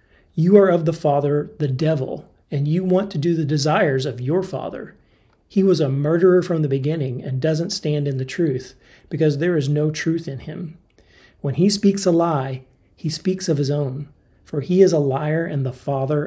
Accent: American